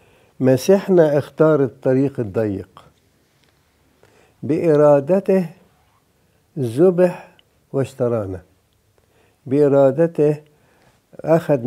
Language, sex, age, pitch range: English, male, 60-79, 125-155 Hz